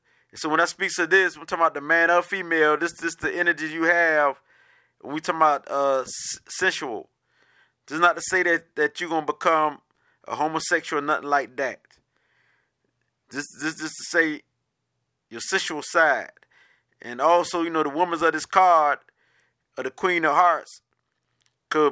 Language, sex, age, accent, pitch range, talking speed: English, male, 30-49, American, 150-180 Hz, 190 wpm